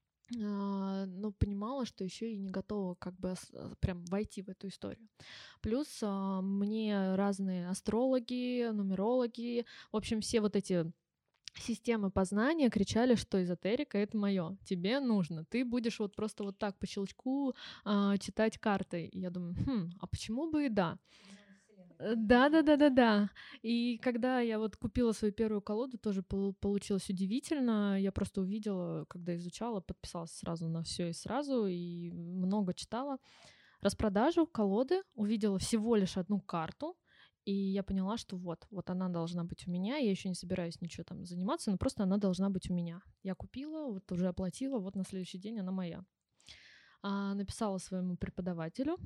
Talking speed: 155 wpm